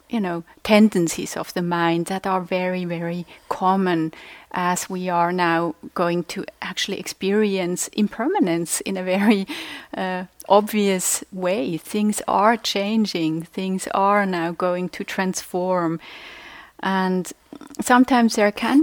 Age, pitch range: 30-49, 180-220 Hz